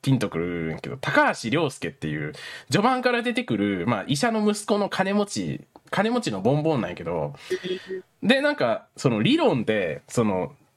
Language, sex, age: Japanese, male, 20-39